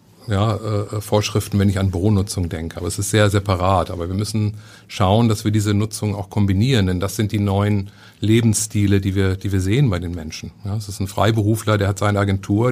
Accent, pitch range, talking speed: German, 100-110 Hz, 215 wpm